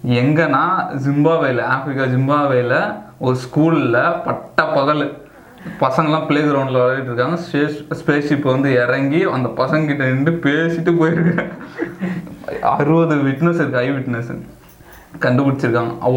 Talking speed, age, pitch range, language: 95 wpm, 20-39, 125-150 Hz, Tamil